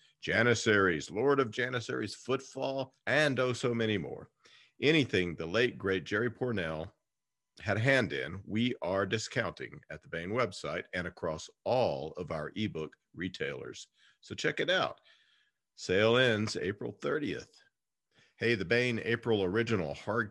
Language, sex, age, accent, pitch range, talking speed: English, male, 50-69, American, 95-125 Hz, 140 wpm